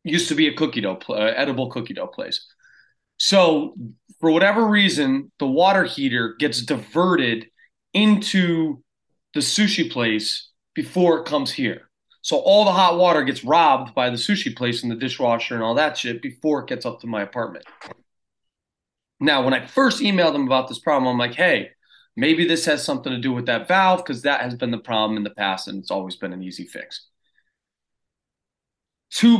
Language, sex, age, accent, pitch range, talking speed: English, male, 30-49, American, 120-175 Hz, 185 wpm